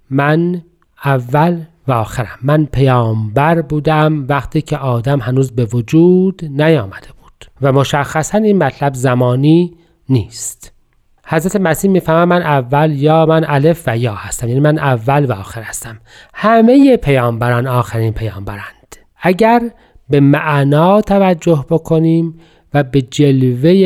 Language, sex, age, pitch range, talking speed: Persian, male, 40-59, 125-165 Hz, 125 wpm